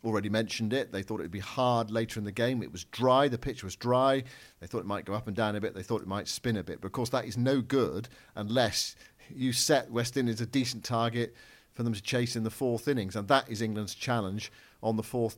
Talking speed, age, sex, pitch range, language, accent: 265 wpm, 50-69, male, 105-125 Hz, English, British